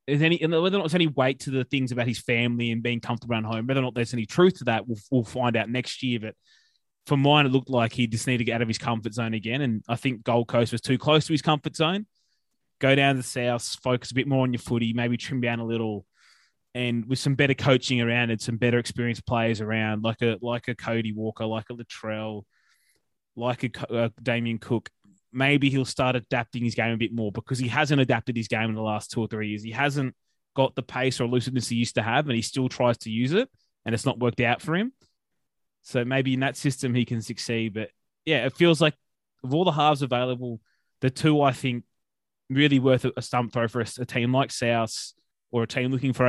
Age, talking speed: 20-39, 245 wpm